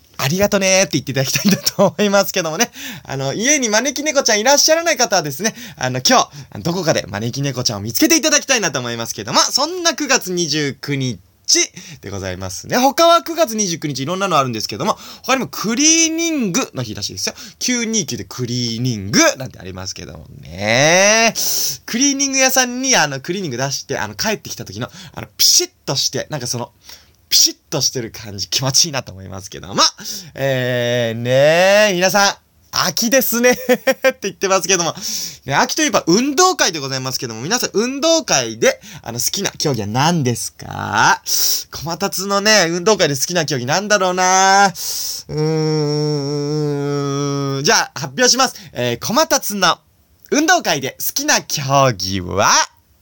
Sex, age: male, 20-39